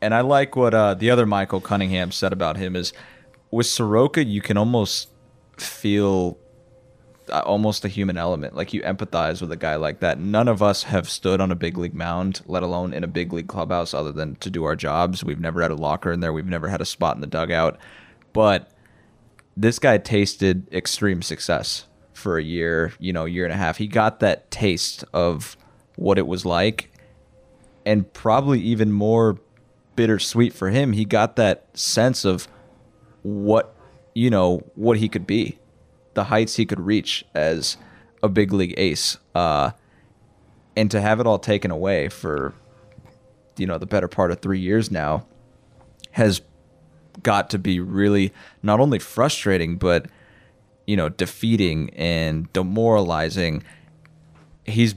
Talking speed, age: 170 wpm, 20-39